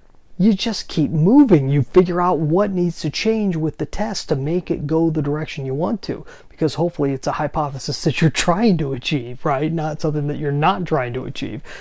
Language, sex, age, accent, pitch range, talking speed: English, male, 30-49, American, 140-180 Hz, 215 wpm